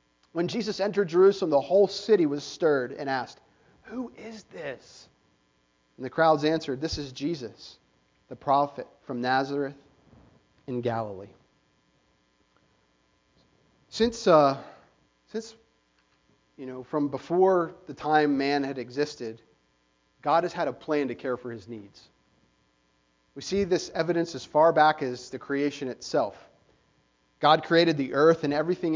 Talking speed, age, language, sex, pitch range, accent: 135 wpm, 40-59, English, male, 115-170 Hz, American